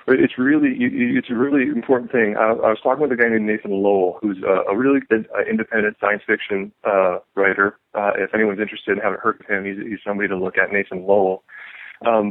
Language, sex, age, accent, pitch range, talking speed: English, male, 40-59, American, 100-120 Hz, 210 wpm